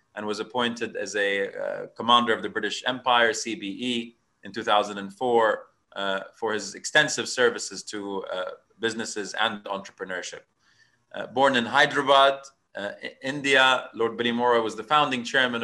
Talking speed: 140 wpm